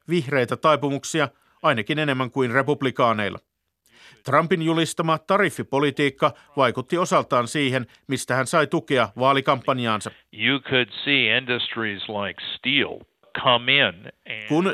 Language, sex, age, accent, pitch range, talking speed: Finnish, male, 50-69, native, 125-155 Hz, 75 wpm